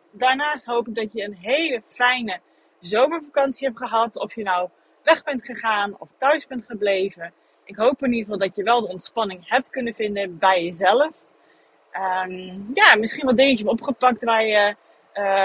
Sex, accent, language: female, Dutch, Dutch